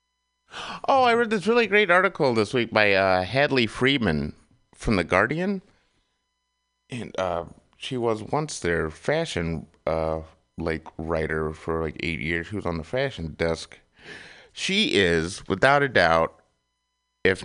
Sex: male